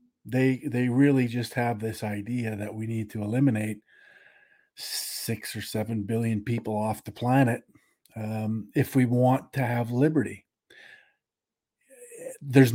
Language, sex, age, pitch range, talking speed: English, male, 50-69, 110-160 Hz, 130 wpm